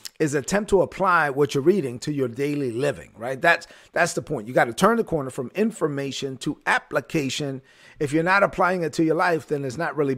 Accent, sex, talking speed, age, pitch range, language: American, male, 225 wpm, 40-59, 140-170 Hz, English